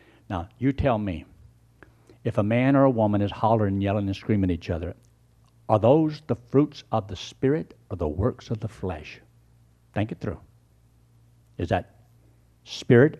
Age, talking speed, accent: 60-79, 170 wpm, American